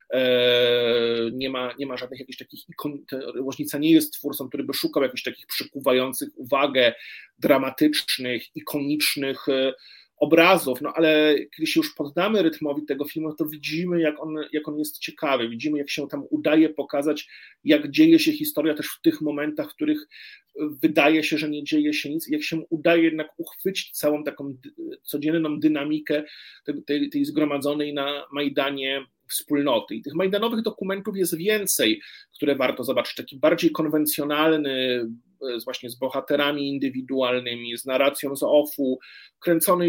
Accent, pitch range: native, 140-165 Hz